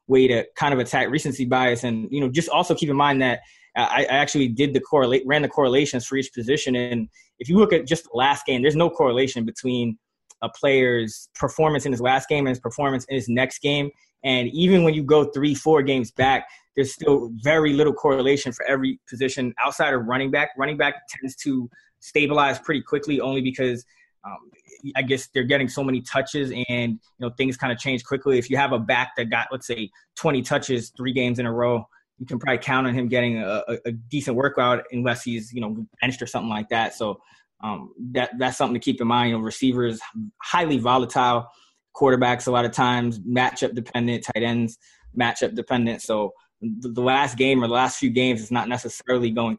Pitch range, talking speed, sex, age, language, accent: 120-140 Hz, 210 wpm, male, 20-39, English, American